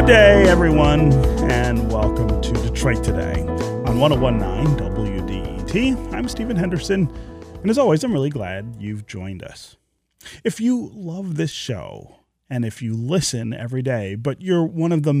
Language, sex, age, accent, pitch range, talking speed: English, male, 30-49, American, 110-160 Hz, 155 wpm